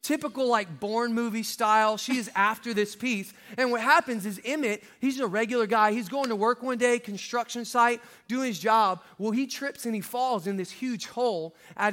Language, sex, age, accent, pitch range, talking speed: English, male, 20-39, American, 215-255 Hz, 205 wpm